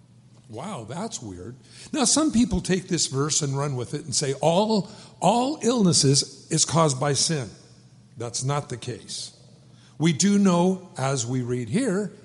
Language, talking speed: English, 160 wpm